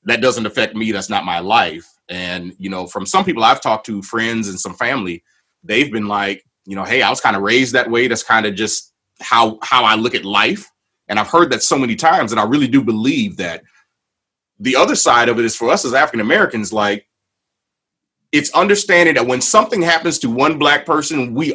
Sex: male